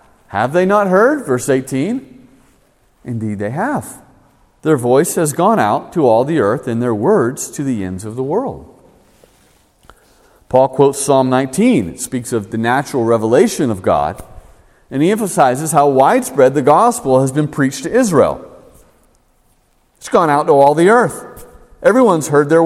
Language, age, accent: English, 40-59, American